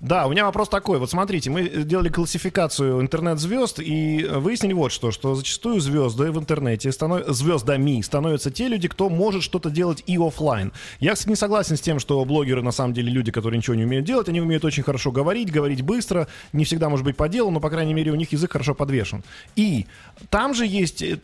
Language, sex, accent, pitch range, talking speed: Russian, male, native, 130-180 Hz, 205 wpm